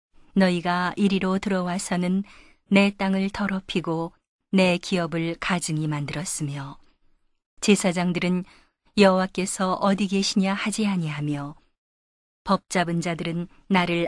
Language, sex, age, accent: Korean, female, 40-59, native